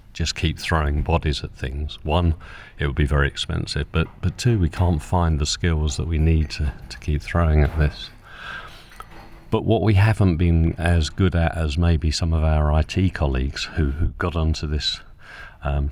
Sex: male